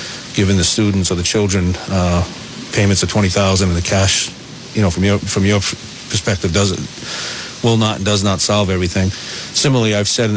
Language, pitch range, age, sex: English, 95-105 Hz, 40-59, male